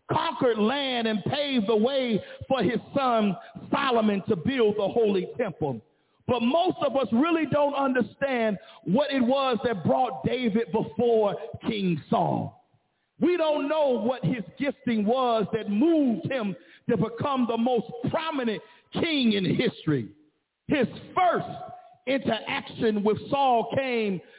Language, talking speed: English, 135 wpm